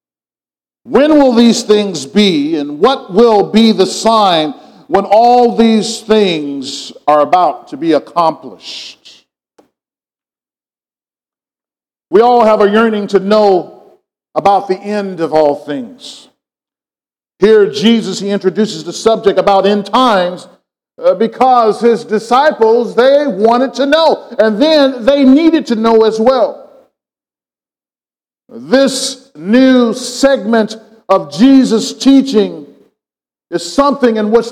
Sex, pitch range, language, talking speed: male, 200-255 Hz, English, 115 wpm